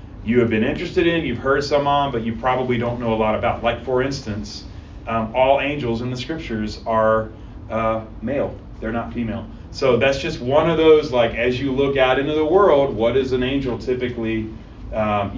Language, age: English, 30-49